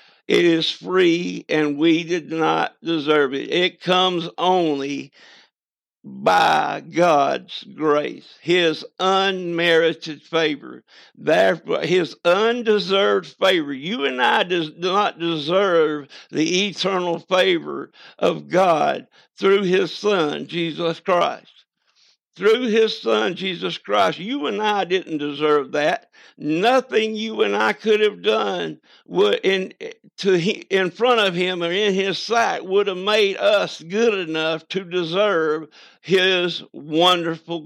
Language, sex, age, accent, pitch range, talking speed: English, male, 60-79, American, 160-195 Hz, 120 wpm